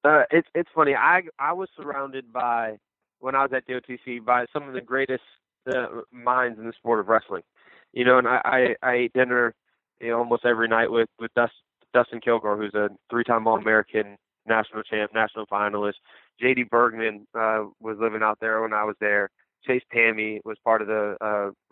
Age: 20-39